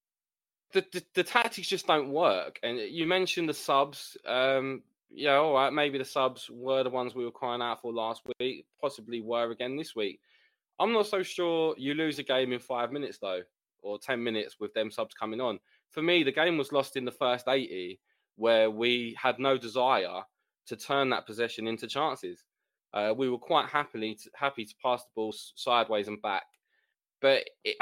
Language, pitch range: English, 120-185 Hz